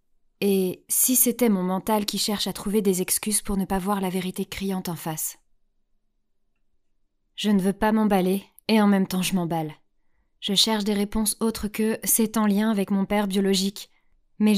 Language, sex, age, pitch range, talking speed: French, female, 20-39, 185-220 Hz, 185 wpm